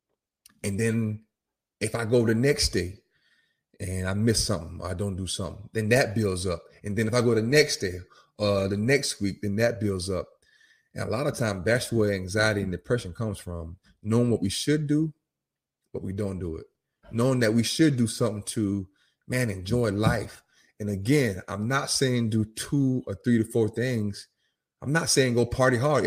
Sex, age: male, 30-49